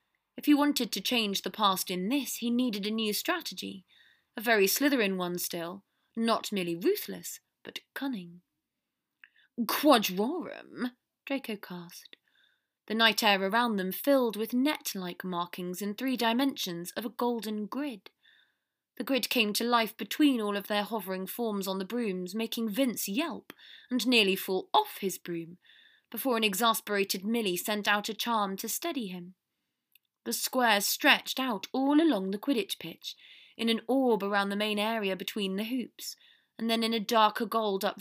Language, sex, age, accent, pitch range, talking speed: English, female, 20-39, British, 200-255 Hz, 165 wpm